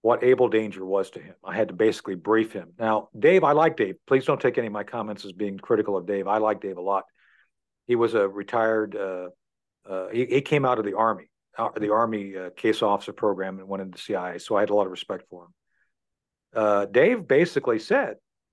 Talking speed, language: 235 wpm, English